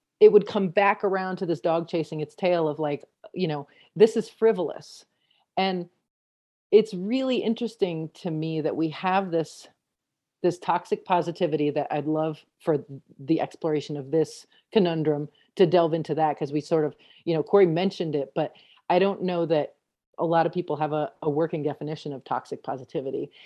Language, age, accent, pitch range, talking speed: English, 40-59, American, 150-185 Hz, 180 wpm